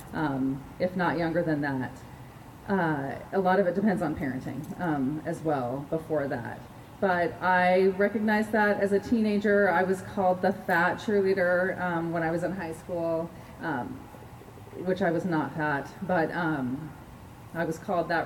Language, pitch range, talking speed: English, 150-185 Hz, 170 wpm